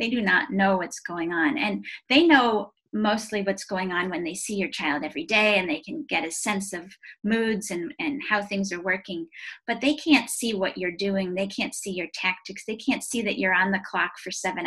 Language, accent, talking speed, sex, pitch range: English, American, 235 wpm, female, 185-240 Hz